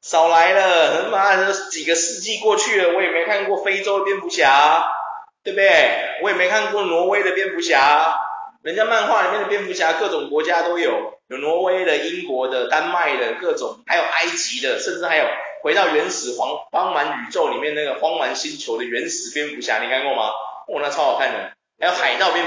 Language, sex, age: Chinese, male, 20-39